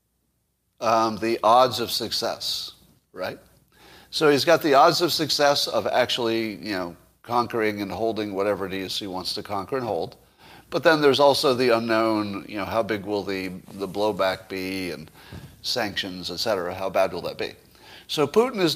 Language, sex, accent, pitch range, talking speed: English, male, American, 100-135 Hz, 180 wpm